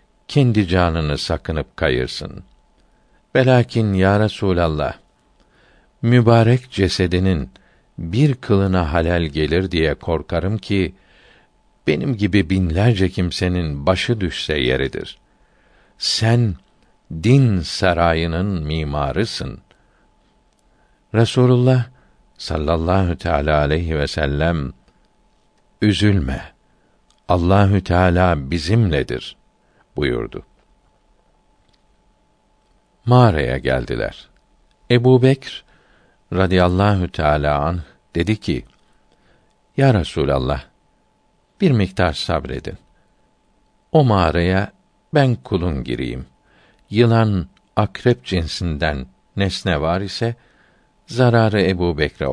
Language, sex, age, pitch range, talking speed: Turkish, male, 60-79, 80-110 Hz, 75 wpm